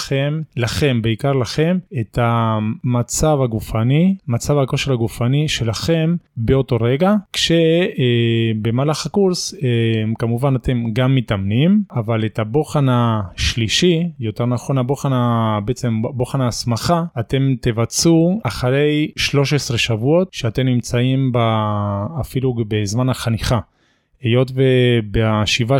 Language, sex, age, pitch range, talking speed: Hebrew, male, 20-39, 115-140 Hz, 100 wpm